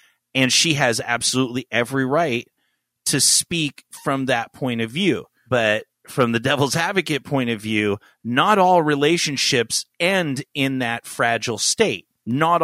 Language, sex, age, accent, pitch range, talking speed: English, male, 30-49, American, 120-150 Hz, 140 wpm